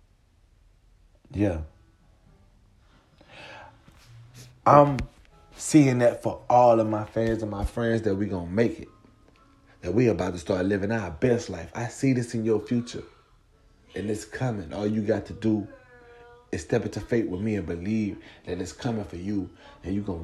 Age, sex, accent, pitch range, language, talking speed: 30-49, male, American, 100-120 Hz, English, 170 wpm